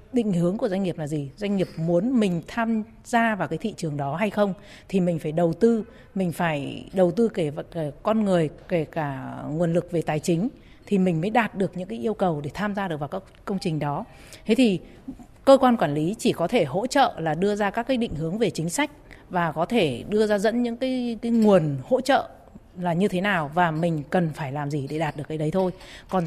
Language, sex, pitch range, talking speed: Vietnamese, female, 165-225 Hz, 245 wpm